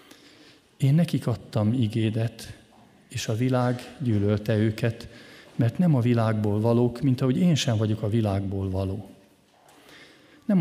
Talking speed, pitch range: 130 wpm, 110-135 Hz